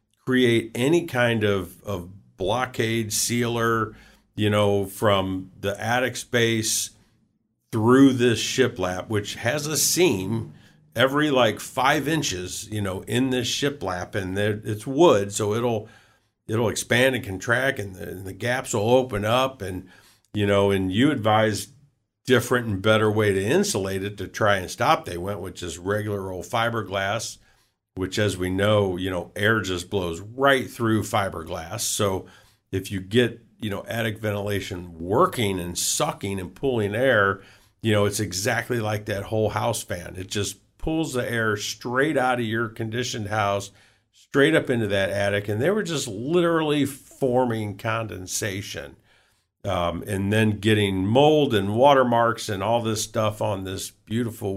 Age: 50-69